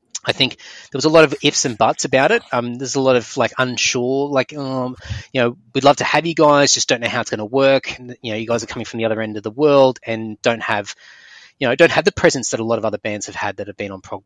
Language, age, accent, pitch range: English, 20-39, Australian, 115-135 Hz